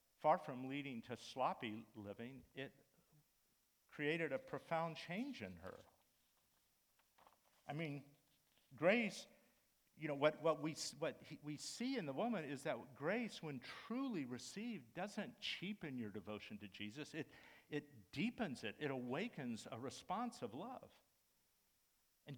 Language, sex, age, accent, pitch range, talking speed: English, male, 50-69, American, 120-165 Hz, 135 wpm